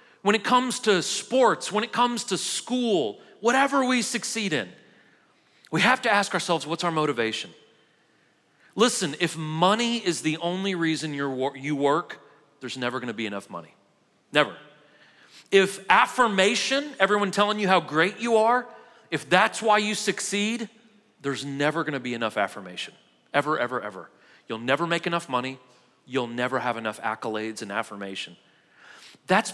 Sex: male